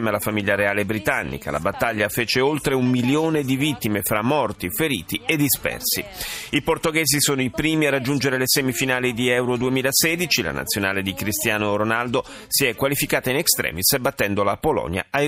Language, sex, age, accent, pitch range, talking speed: Italian, male, 30-49, native, 105-145 Hz, 170 wpm